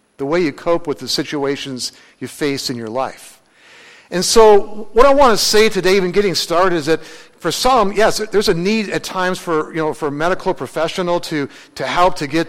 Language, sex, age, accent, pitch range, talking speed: English, male, 50-69, American, 145-190 Hz, 215 wpm